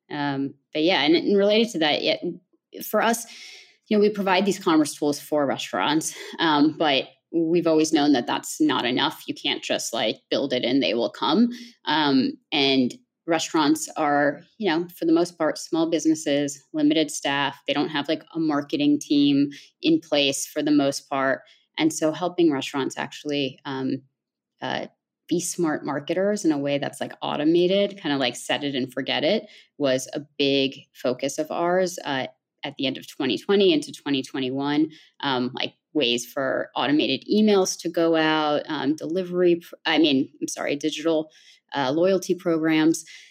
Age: 20-39